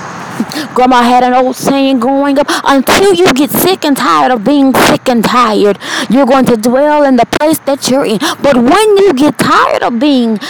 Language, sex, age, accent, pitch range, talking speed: English, female, 20-39, American, 235-285 Hz, 200 wpm